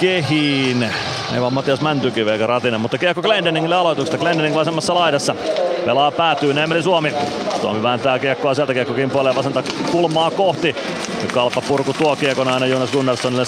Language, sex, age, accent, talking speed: Finnish, male, 30-49, native, 145 wpm